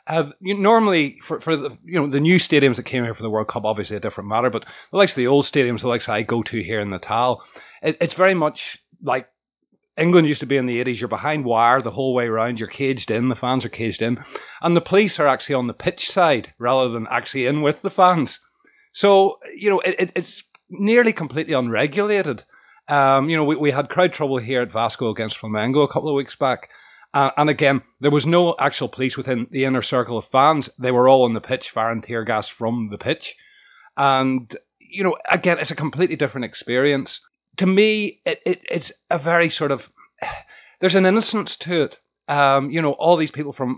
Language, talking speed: English, 225 wpm